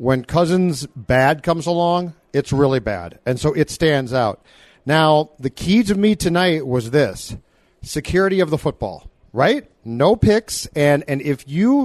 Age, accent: 40-59, American